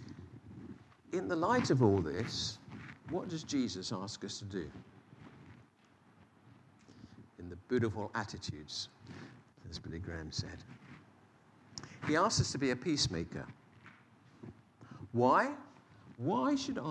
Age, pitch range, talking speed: 50-69, 105-135 Hz, 110 wpm